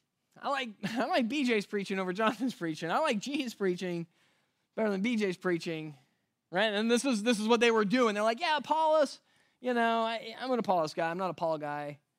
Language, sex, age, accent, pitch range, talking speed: English, male, 20-39, American, 160-230 Hz, 210 wpm